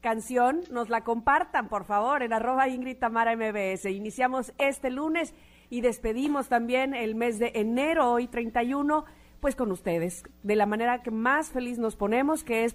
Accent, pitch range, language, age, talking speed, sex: Mexican, 210-265 Hz, Spanish, 40-59, 170 wpm, female